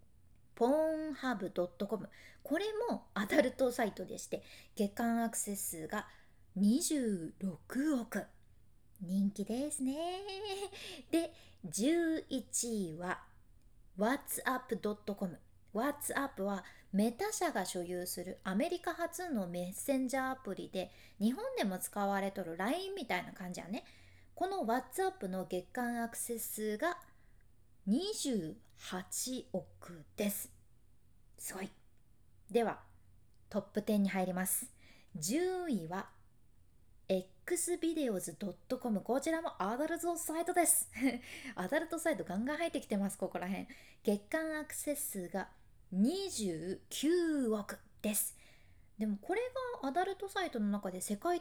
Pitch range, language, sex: 190-310 Hz, Japanese, female